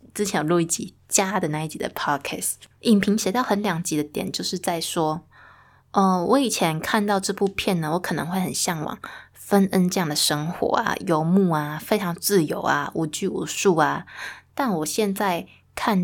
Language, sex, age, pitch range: Chinese, female, 20-39, 165-200 Hz